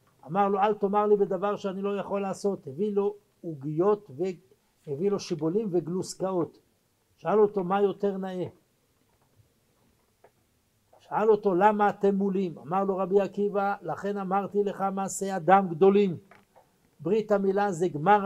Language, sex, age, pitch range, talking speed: Hebrew, male, 60-79, 175-215 Hz, 135 wpm